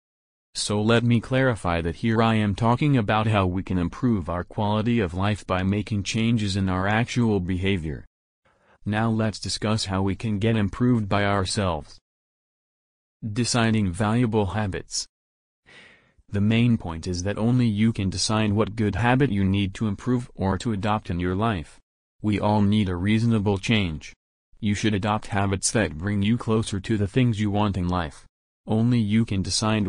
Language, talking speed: English, 170 wpm